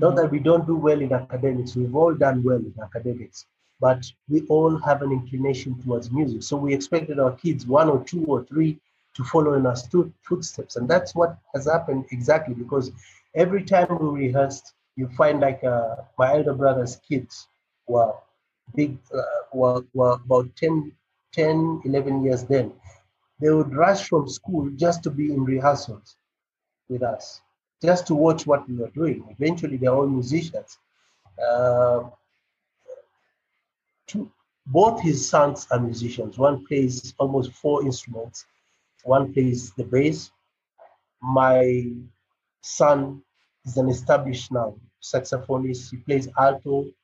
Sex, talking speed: male, 150 wpm